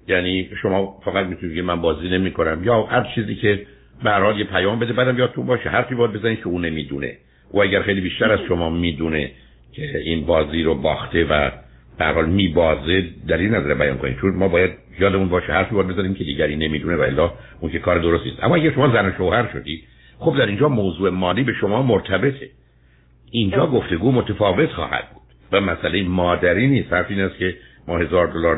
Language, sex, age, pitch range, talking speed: Persian, male, 60-79, 80-105 Hz, 200 wpm